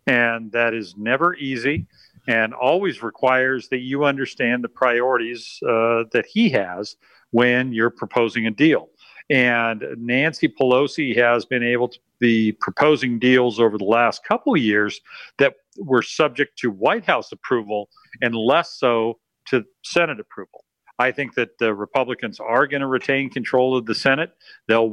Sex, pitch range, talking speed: male, 115-150 Hz, 155 wpm